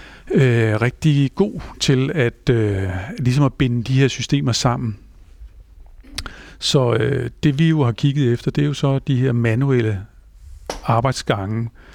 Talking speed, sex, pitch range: 130 wpm, male, 115-135 Hz